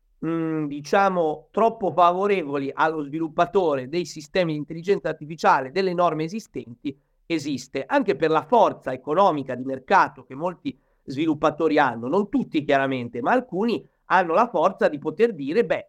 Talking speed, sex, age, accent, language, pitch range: 140 wpm, male, 50-69, native, Italian, 150-205 Hz